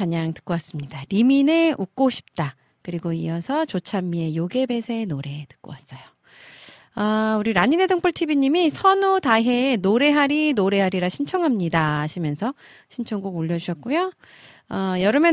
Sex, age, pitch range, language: female, 40-59, 160-240 Hz, Korean